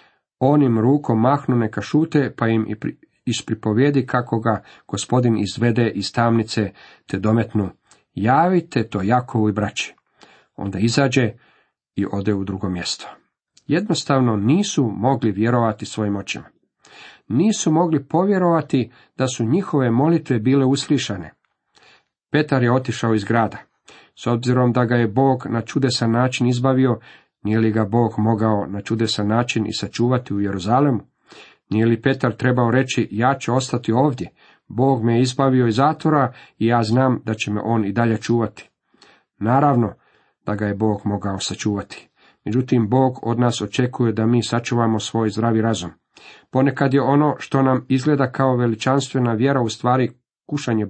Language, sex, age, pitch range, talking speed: Croatian, male, 40-59, 110-135 Hz, 145 wpm